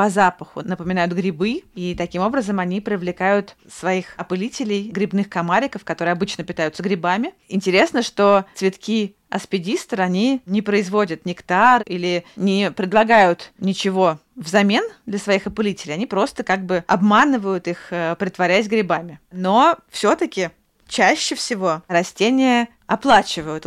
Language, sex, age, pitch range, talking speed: Russian, female, 30-49, 180-220 Hz, 120 wpm